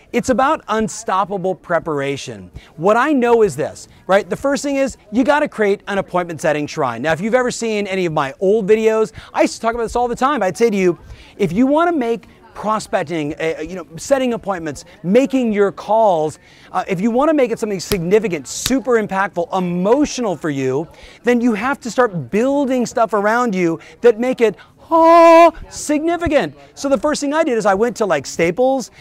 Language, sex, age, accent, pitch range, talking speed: English, male, 40-59, American, 180-245 Hz, 200 wpm